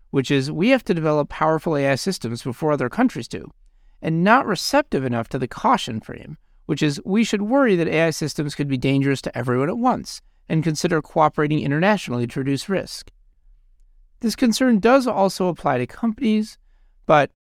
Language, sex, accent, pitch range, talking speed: English, male, American, 130-190 Hz, 175 wpm